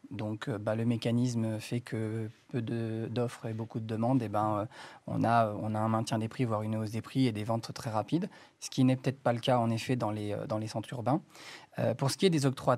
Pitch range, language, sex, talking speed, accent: 115-140 Hz, French, male, 265 wpm, French